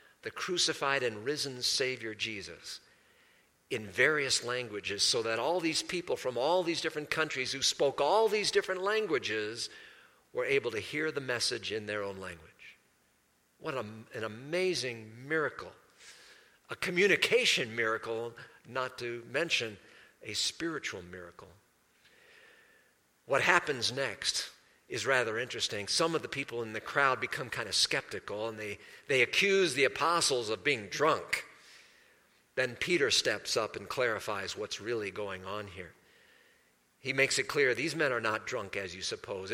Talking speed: 145 wpm